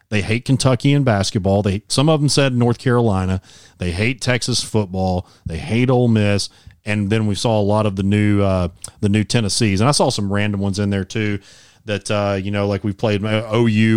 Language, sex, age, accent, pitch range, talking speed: English, male, 30-49, American, 100-120 Hz, 215 wpm